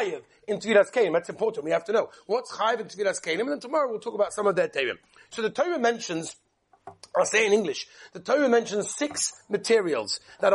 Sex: male